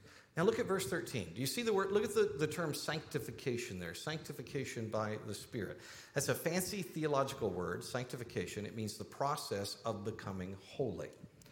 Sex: male